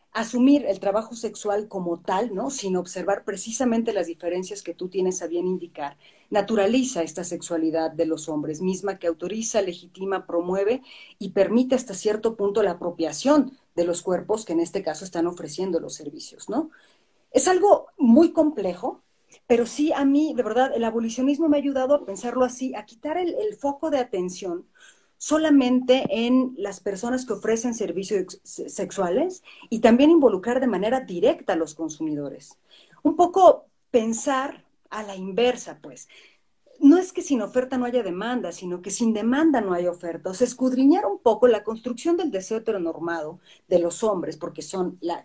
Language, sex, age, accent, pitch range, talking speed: Spanish, female, 40-59, Mexican, 180-255 Hz, 165 wpm